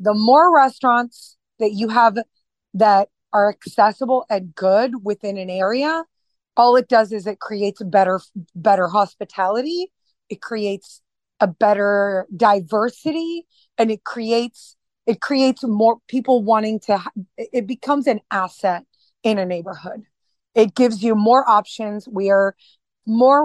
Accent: American